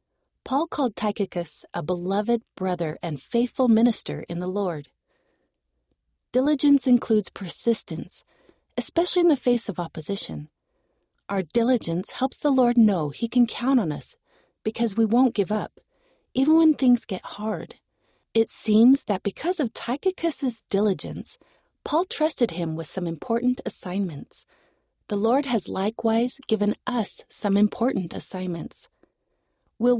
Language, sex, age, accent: English, female, 30-49, American